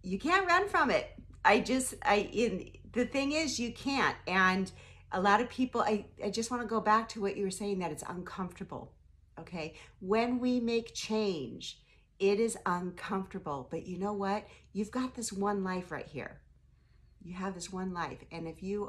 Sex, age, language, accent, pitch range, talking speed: female, 50-69, English, American, 175-215 Hz, 195 wpm